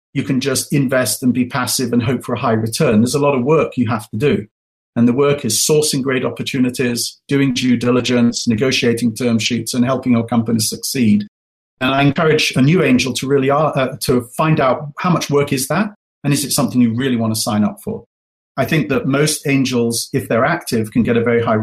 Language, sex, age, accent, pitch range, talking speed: English, male, 40-59, British, 120-145 Hz, 225 wpm